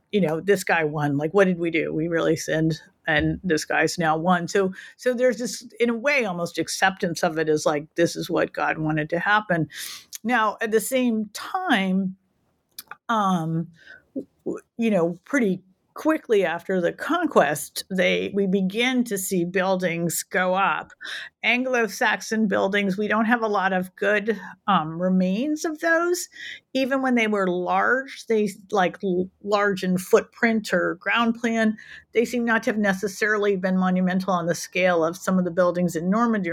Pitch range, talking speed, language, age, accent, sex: 180-225 Hz, 170 wpm, English, 50-69, American, female